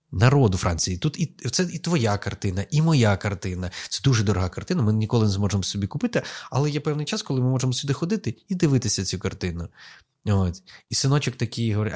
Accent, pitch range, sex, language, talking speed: native, 95-125 Hz, male, Ukrainian, 195 wpm